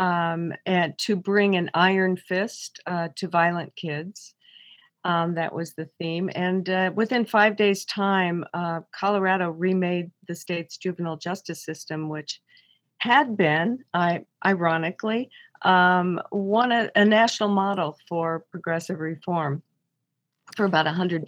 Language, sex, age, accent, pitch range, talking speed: English, female, 50-69, American, 165-195 Hz, 135 wpm